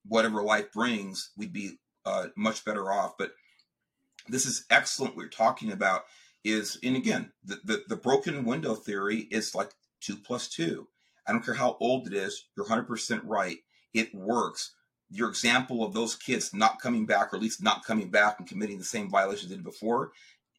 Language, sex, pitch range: English, male, 105-120 Hz